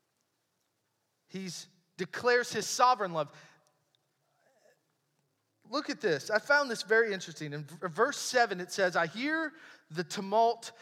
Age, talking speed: 40-59, 120 wpm